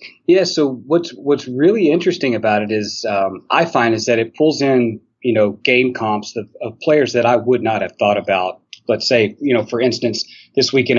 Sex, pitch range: male, 105-120 Hz